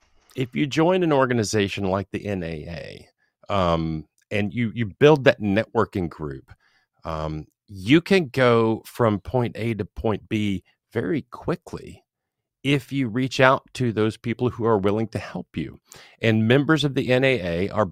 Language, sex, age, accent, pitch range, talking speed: English, male, 40-59, American, 95-130 Hz, 155 wpm